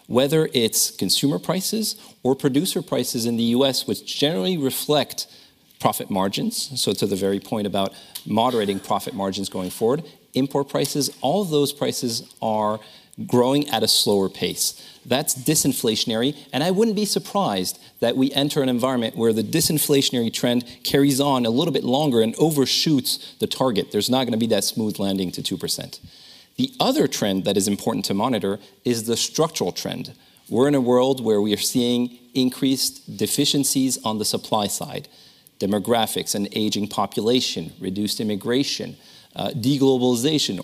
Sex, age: male, 40-59